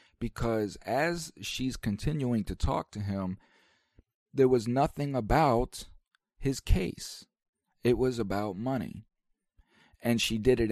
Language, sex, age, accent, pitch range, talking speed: English, male, 40-59, American, 95-115 Hz, 125 wpm